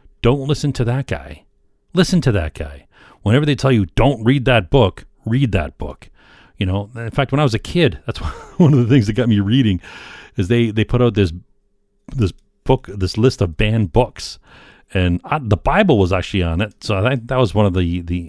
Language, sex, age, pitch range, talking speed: English, male, 40-59, 90-120 Hz, 225 wpm